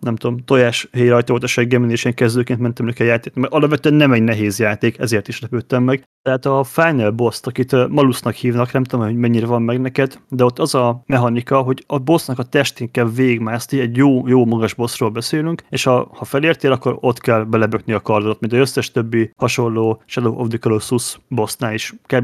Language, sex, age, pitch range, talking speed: Hungarian, male, 30-49, 120-140 Hz, 200 wpm